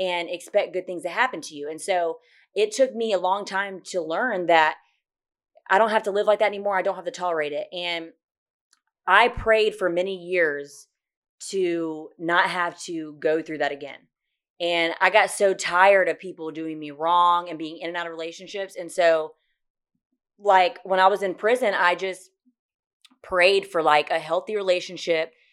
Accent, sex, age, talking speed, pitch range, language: American, female, 30-49, 190 wpm, 160-190 Hz, English